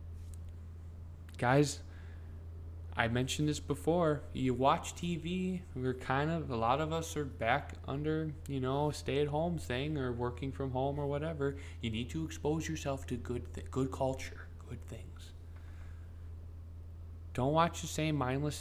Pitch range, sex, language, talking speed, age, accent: 85-130 Hz, male, English, 145 wpm, 20-39, American